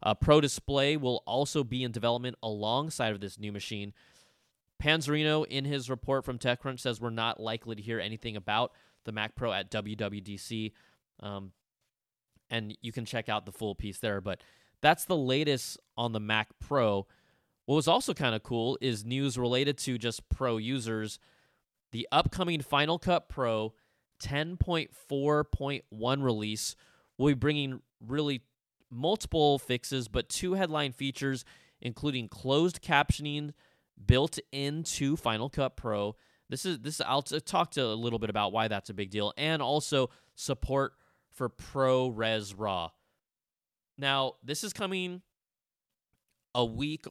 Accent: American